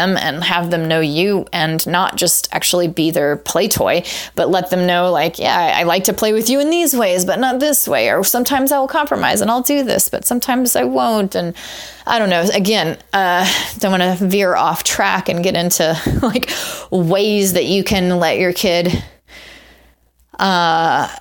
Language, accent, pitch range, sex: English, American, 170-210 Hz, female